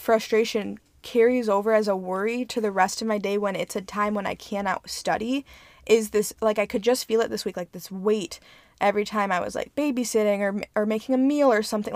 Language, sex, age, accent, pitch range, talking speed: English, female, 20-39, American, 200-240 Hz, 230 wpm